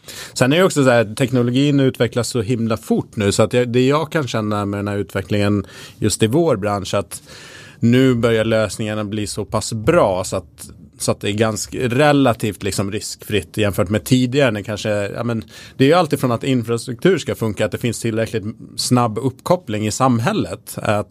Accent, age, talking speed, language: Norwegian, 30-49, 190 wpm, Swedish